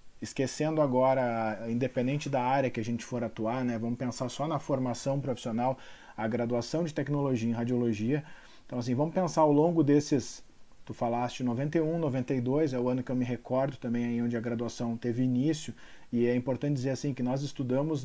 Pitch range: 120-145 Hz